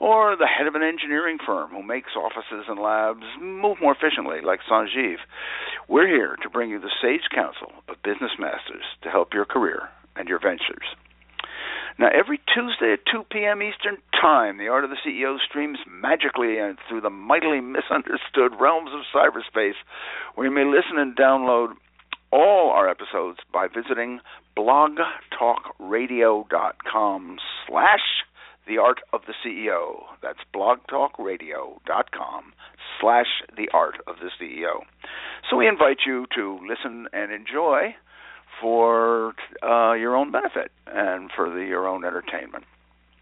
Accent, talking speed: American, 140 wpm